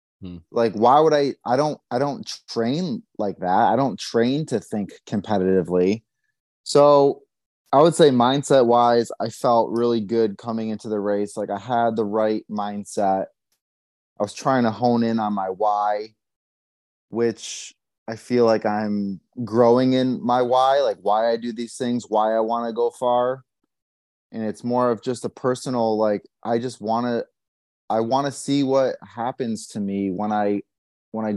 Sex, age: male, 20-39